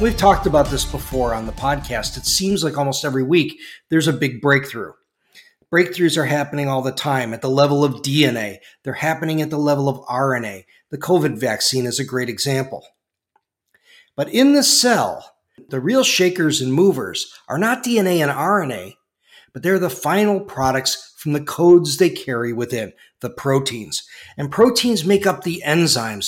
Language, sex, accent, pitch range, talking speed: English, male, American, 130-175 Hz, 175 wpm